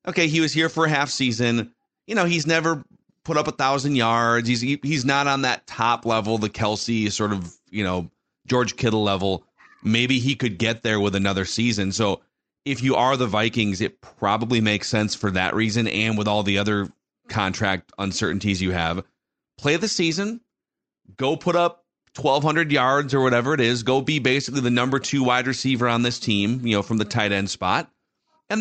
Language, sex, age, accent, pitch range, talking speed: English, male, 30-49, American, 105-135 Hz, 200 wpm